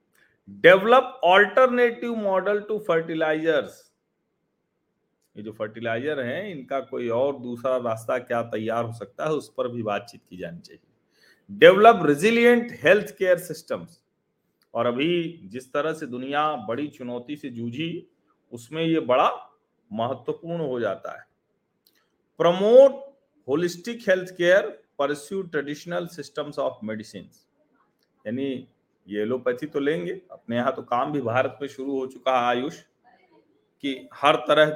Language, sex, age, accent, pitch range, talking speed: Hindi, male, 40-59, native, 120-190 Hz, 130 wpm